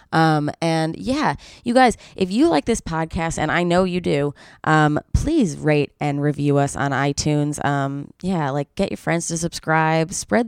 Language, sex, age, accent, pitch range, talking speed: English, female, 20-39, American, 145-180 Hz, 185 wpm